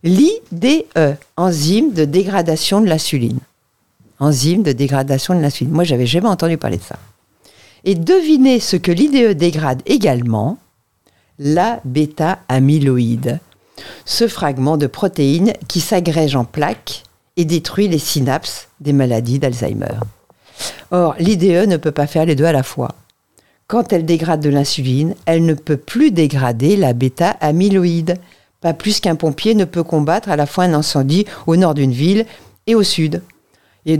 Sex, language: female, French